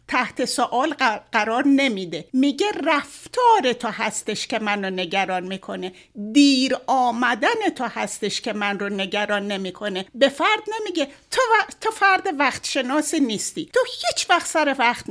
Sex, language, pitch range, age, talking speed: female, Persian, 210-330 Hz, 60-79, 145 wpm